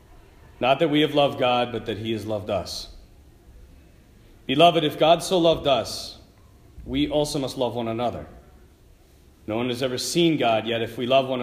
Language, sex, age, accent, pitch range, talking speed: English, male, 40-59, American, 90-135 Hz, 185 wpm